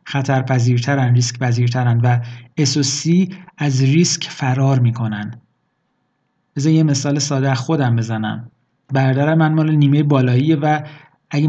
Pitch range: 130-155 Hz